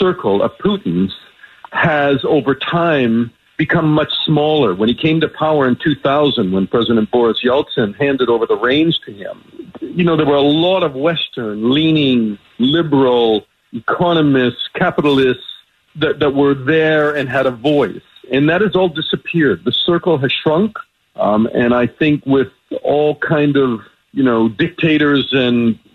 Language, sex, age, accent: English, male, 50-69, American